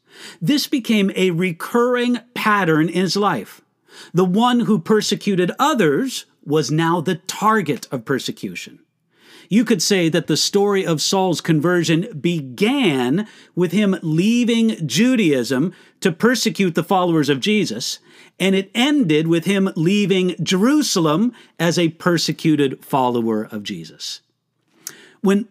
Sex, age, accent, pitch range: male, 50-69, American, 160-215 Hz